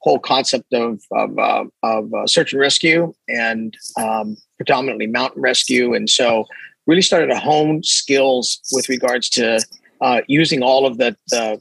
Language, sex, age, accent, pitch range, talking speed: English, male, 40-59, American, 115-135 Hz, 160 wpm